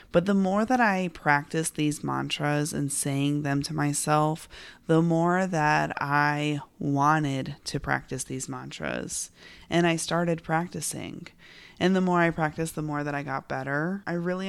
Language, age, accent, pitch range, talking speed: English, 20-39, American, 145-170 Hz, 160 wpm